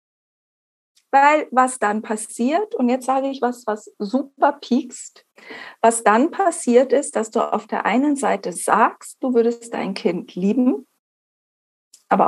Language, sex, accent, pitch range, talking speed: German, female, German, 200-245 Hz, 140 wpm